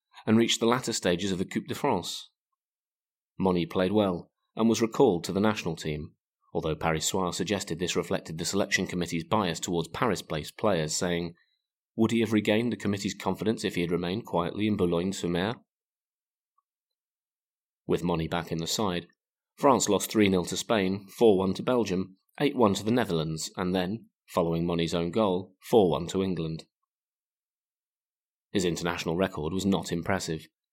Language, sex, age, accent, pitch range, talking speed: English, male, 30-49, British, 85-105 Hz, 160 wpm